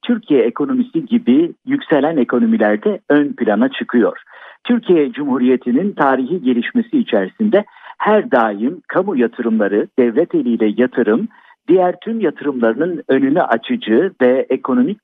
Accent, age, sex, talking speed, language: native, 50-69, male, 110 wpm, Turkish